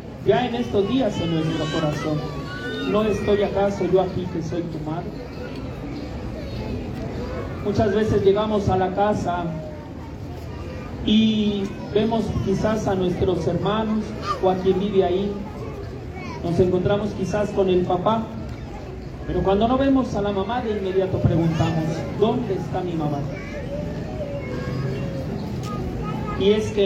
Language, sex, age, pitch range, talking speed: Spanish, male, 40-59, 165-205 Hz, 125 wpm